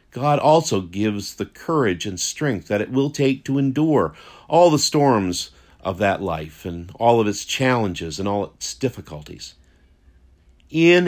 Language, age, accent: English, 50-69, American